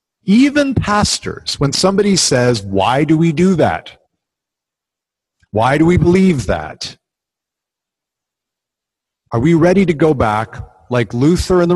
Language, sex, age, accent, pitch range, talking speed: English, male, 50-69, American, 115-180 Hz, 130 wpm